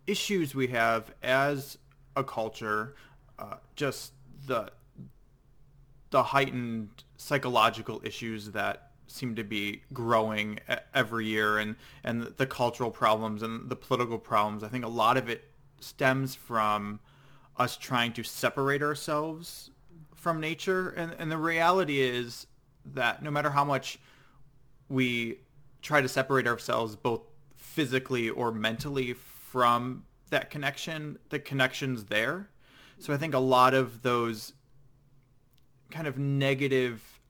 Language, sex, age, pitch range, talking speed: English, male, 30-49, 115-140 Hz, 130 wpm